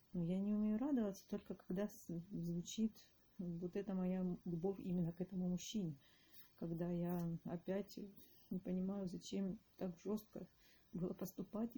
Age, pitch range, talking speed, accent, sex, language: 30-49, 175-210 Hz, 130 wpm, native, female, Russian